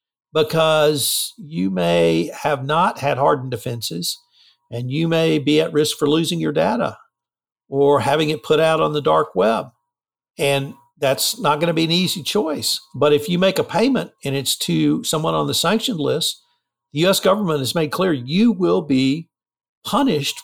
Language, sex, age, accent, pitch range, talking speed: English, male, 60-79, American, 125-160 Hz, 175 wpm